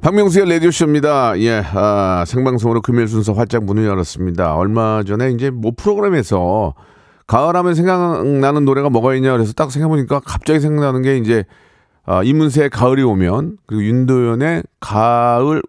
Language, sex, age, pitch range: Korean, male, 40-59, 95-135 Hz